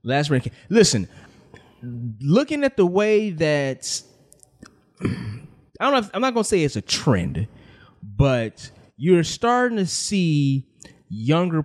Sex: male